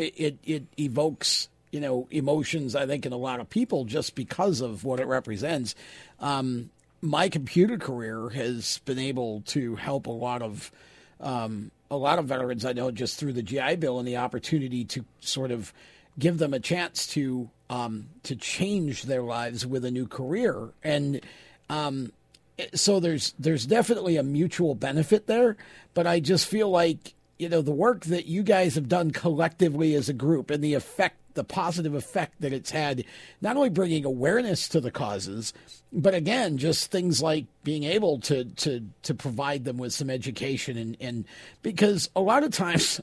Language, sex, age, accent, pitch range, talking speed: English, male, 50-69, American, 130-180 Hz, 180 wpm